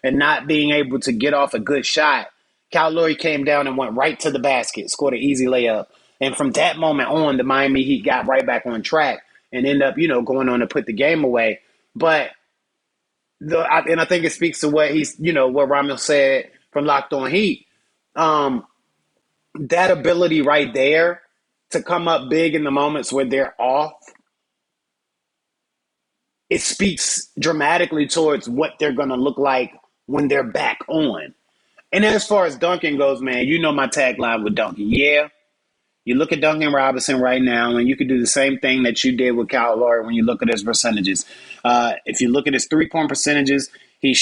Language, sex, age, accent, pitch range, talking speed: English, male, 30-49, American, 130-155 Hz, 200 wpm